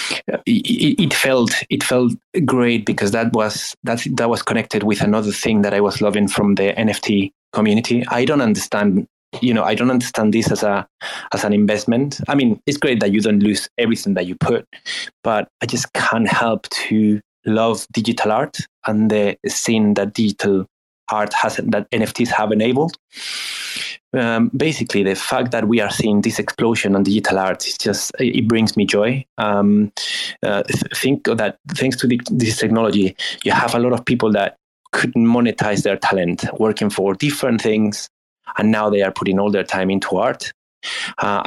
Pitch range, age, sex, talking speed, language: 105-120 Hz, 20-39, male, 180 wpm, English